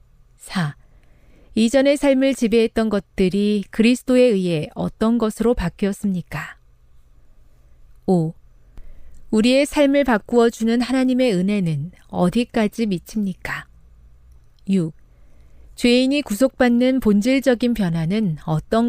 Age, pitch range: 40-59, 155-240 Hz